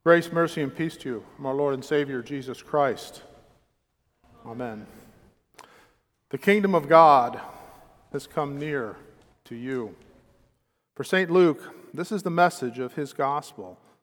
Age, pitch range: 50-69, 130-155 Hz